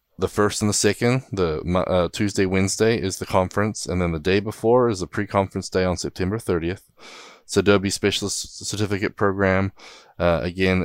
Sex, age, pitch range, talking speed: male, 20-39, 80-95 Hz, 165 wpm